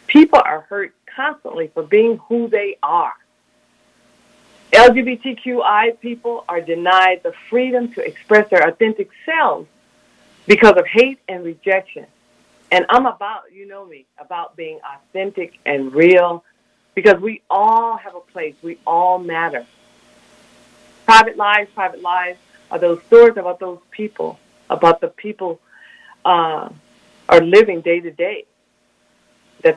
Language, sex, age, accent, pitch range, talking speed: English, female, 50-69, American, 175-235 Hz, 130 wpm